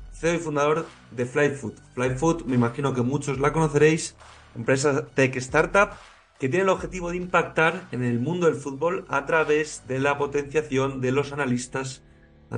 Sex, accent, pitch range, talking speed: male, Spanish, 120-150 Hz, 165 wpm